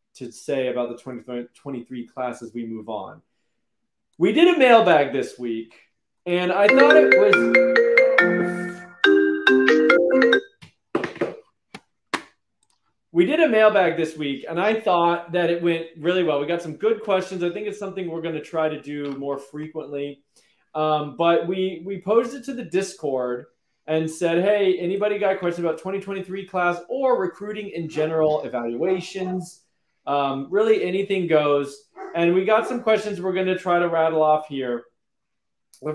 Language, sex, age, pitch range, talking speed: English, male, 20-39, 150-210 Hz, 155 wpm